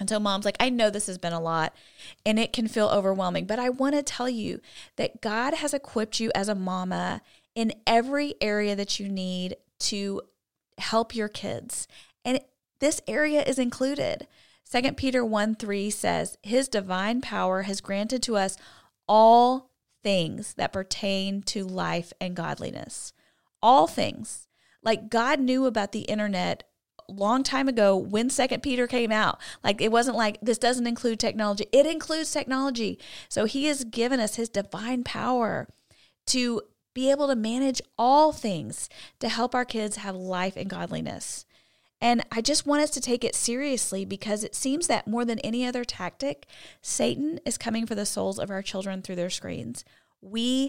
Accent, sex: American, female